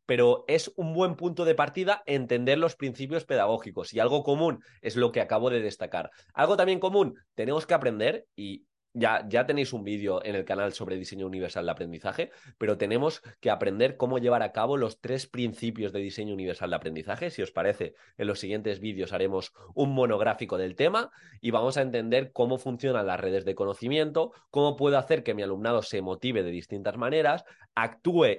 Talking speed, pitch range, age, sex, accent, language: 190 wpm, 105-145 Hz, 20-39, male, Spanish, Spanish